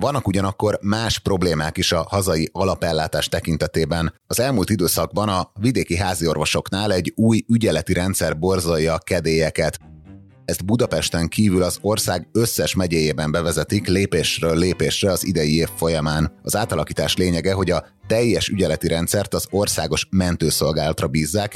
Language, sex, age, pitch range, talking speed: Hungarian, male, 30-49, 80-95 Hz, 135 wpm